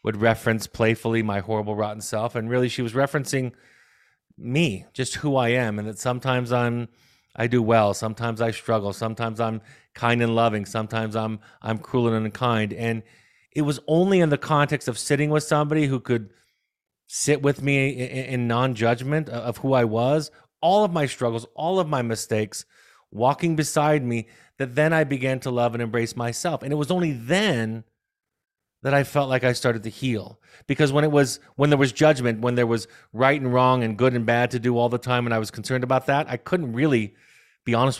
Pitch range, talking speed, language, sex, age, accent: 115-145 Hz, 200 wpm, English, male, 30-49, American